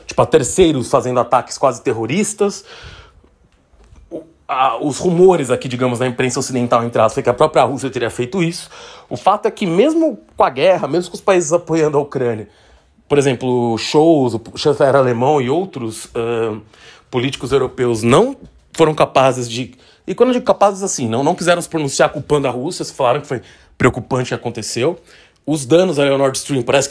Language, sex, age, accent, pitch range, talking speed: English, male, 30-49, Brazilian, 125-175 Hz, 180 wpm